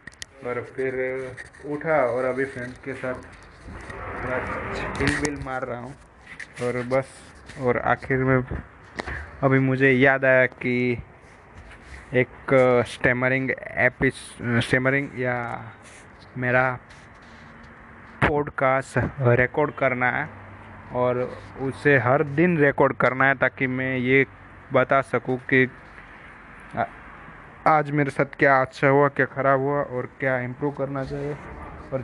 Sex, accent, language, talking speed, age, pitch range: male, native, Hindi, 115 wpm, 20-39, 125-135 Hz